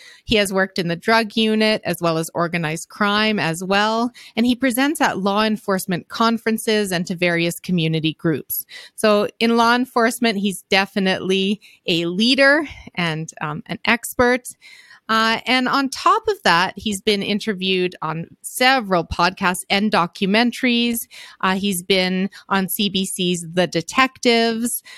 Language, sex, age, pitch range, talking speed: English, female, 30-49, 180-230 Hz, 140 wpm